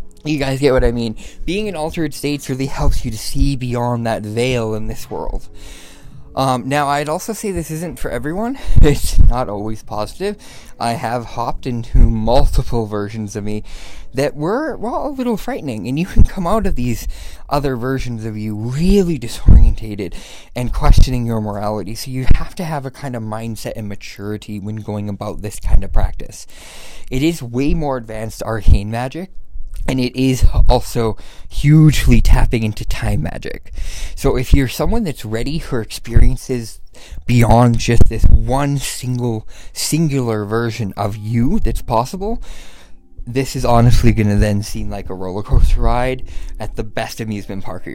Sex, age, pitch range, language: male, 20-39, 105-135 Hz, English